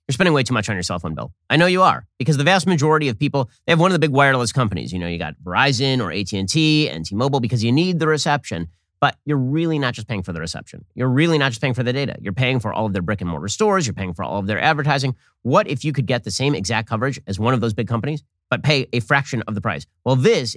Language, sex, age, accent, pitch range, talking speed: English, male, 30-49, American, 110-155 Hz, 290 wpm